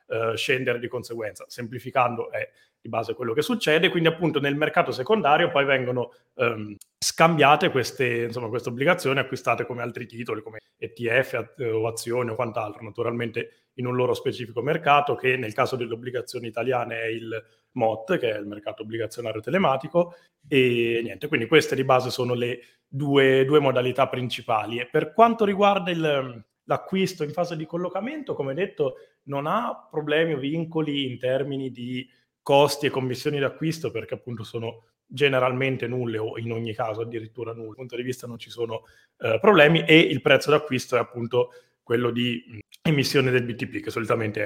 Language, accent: Italian, native